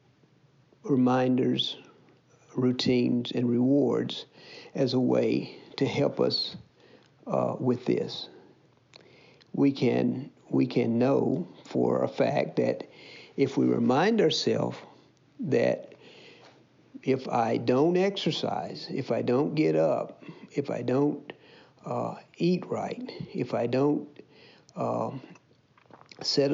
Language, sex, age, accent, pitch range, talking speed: English, male, 60-79, American, 120-145 Hz, 105 wpm